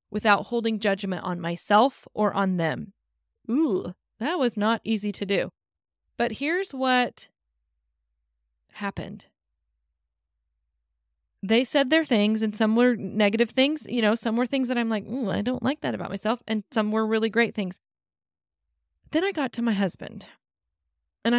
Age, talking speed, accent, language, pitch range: 20-39, 155 wpm, American, English, 175-225 Hz